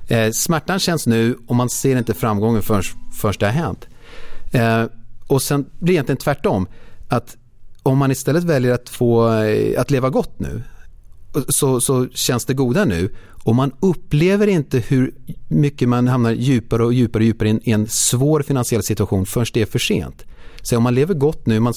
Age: 30-49